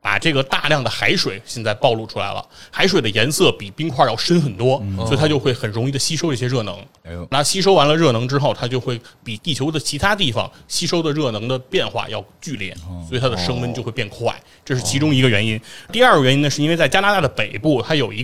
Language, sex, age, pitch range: Chinese, male, 20-39, 115-160 Hz